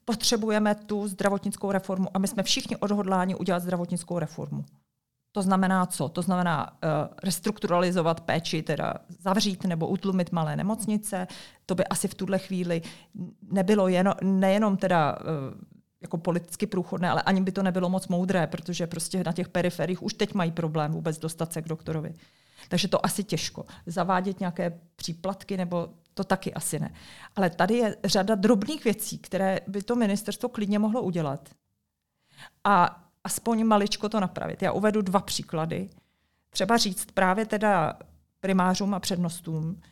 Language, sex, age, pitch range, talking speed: Czech, female, 40-59, 170-200 Hz, 150 wpm